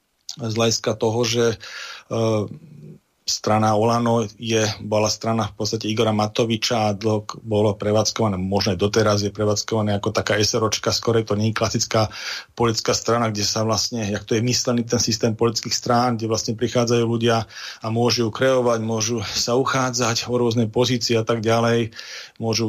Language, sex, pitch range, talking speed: Slovak, male, 105-120 Hz, 160 wpm